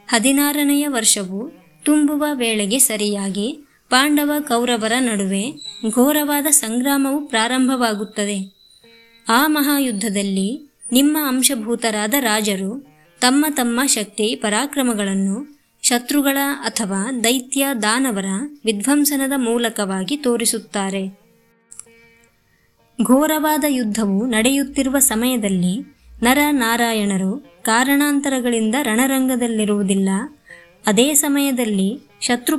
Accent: Indian